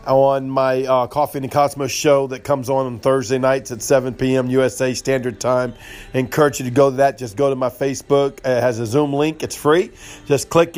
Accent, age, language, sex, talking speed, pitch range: American, 40-59, English, male, 225 wpm, 130-160 Hz